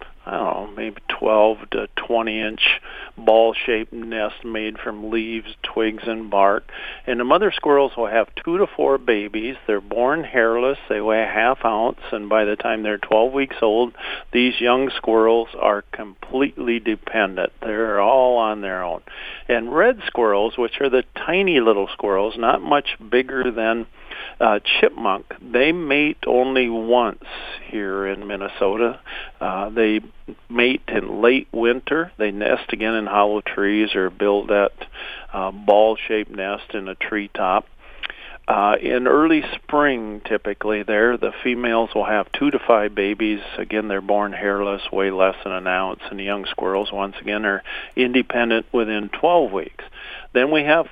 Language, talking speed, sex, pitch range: English, 155 wpm, male, 105-120 Hz